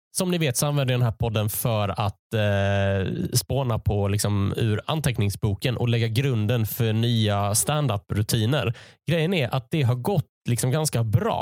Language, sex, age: Swedish, male, 20-39